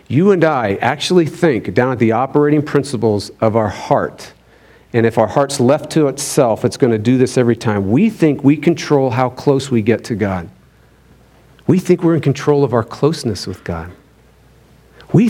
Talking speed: 190 wpm